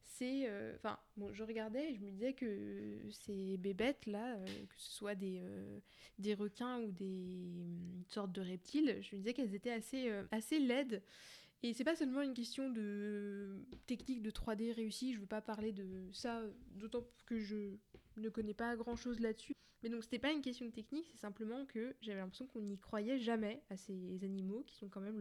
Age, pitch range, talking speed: 20-39, 205-245 Hz, 200 wpm